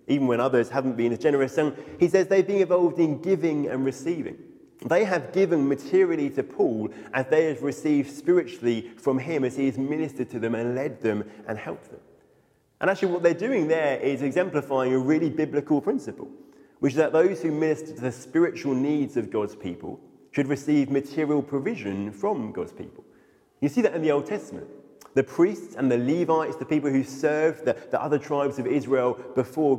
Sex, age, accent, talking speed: male, 30-49, British, 195 wpm